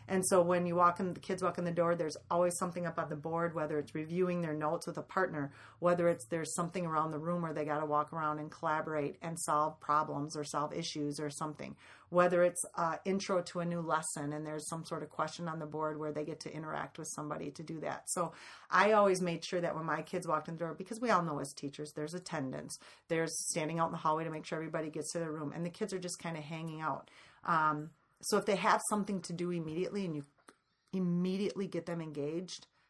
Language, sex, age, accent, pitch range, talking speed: English, female, 40-59, American, 155-175 Hz, 250 wpm